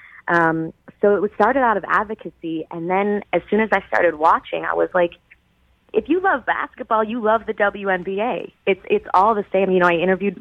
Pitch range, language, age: 150-175 Hz, English, 20-39